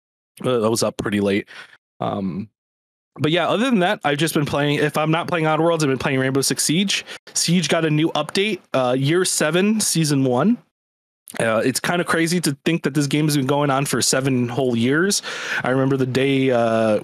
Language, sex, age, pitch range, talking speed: English, male, 20-39, 130-175 Hz, 215 wpm